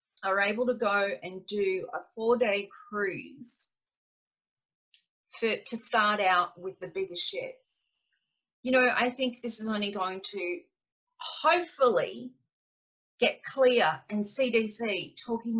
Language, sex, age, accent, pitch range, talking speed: English, female, 40-59, Australian, 190-245 Hz, 120 wpm